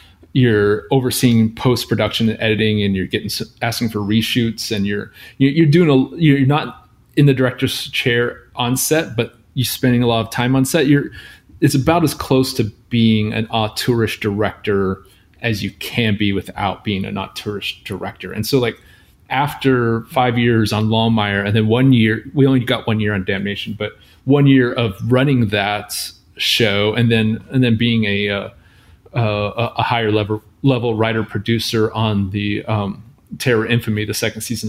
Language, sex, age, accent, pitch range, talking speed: English, male, 30-49, American, 105-125 Hz, 175 wpm